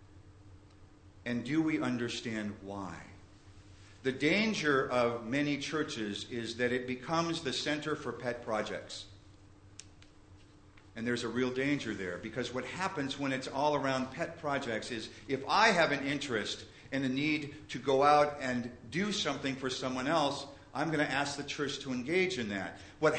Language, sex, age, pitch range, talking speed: English, male, 50-69, 100-145 Hz, 165 wpm